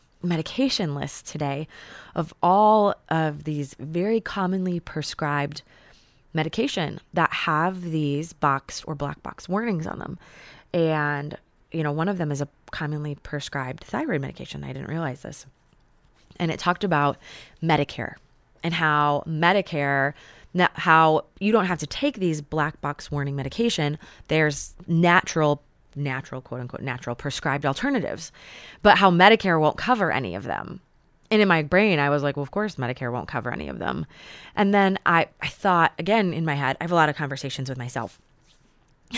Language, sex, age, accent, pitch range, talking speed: English, female, 20-39, American, 145-180 Hz, 160 wpm